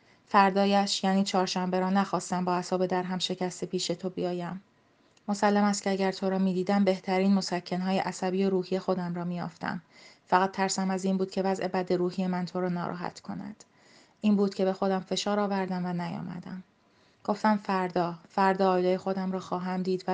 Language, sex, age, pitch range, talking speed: Persian, female, 30-49, 175-190 Hz, 180 wpm